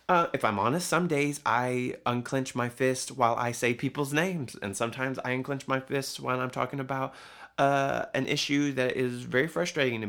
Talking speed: 195 wpm